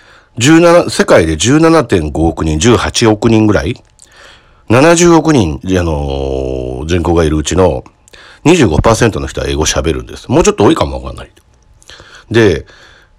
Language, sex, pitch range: Japanese, male, 75-120 Hz